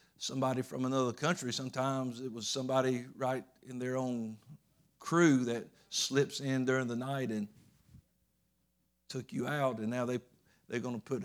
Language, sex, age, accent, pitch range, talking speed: English, male, 50-69, American, 120-140 Hz, 165 wpm